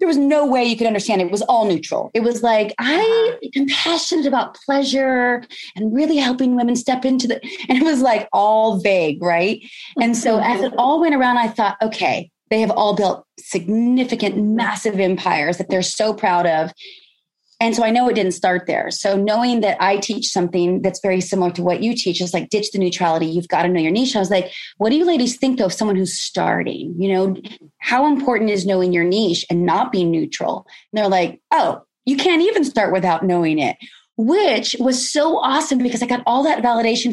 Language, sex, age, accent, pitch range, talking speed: English, female, 30-49, American, 195-260 Hz, 215 wpm